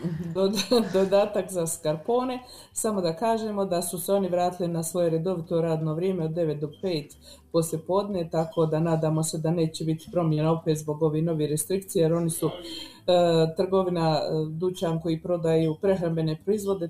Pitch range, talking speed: 160-200 Hz, 155 wpm